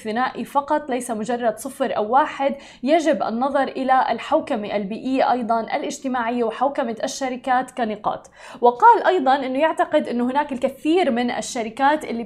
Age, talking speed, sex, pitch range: 20-39, 125 wpm, female, 235-290 Hz